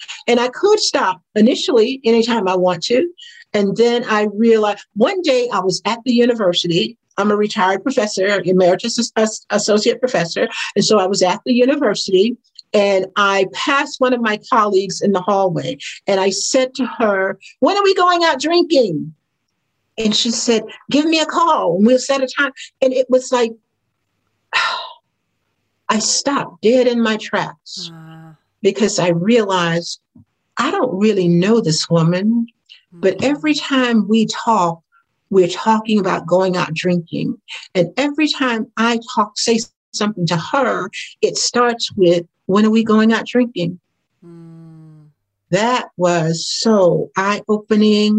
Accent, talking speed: American, 150 wpm